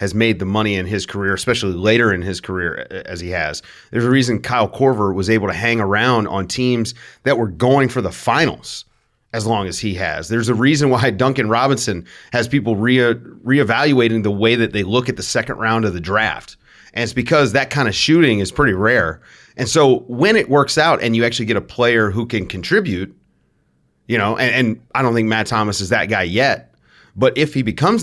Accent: American